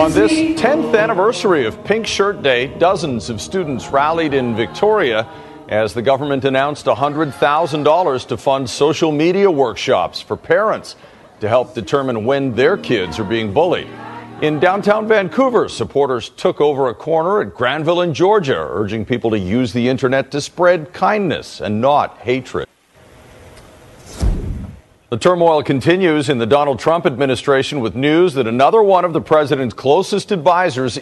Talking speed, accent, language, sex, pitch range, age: 150 wpm, American, English, male, 125-170 Hz, 50-69